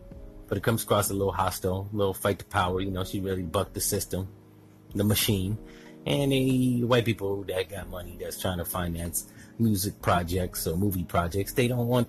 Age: 30-49